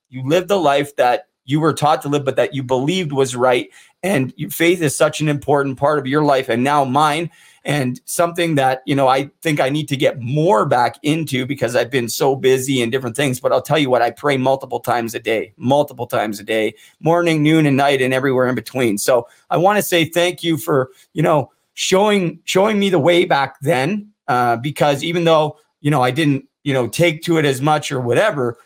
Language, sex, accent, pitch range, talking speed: English, male, American, 130-160 Hz, 225 wpm